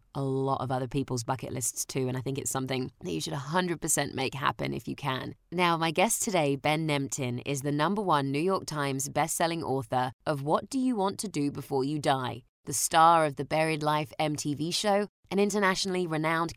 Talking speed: 210 wpm